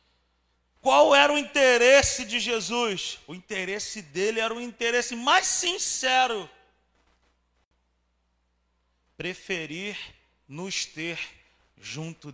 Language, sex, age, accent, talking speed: Portuguese, male, 40-59, Brazilian, 90 wpm